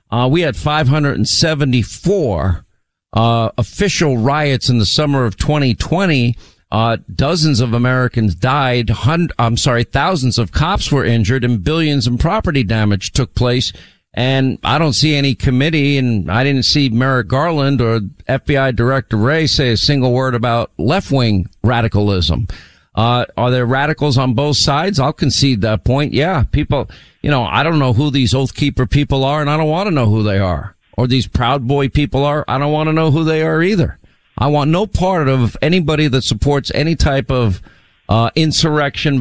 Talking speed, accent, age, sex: 180 wpm, American, 50-69, male